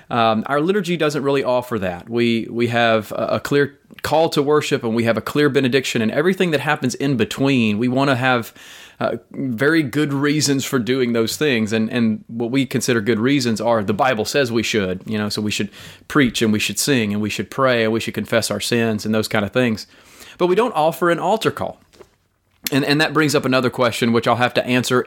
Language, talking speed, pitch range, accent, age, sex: English, 230 wpm, 115-145 Hz, American, 30-49, male